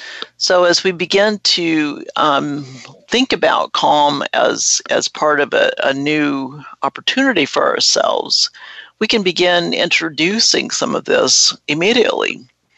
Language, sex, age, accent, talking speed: English, male, 60-79, American, 125 wpm